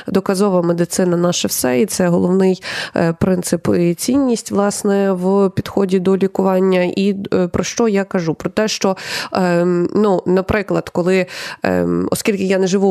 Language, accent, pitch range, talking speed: Ukrainian, native, 175-210 Hz, 140 wpm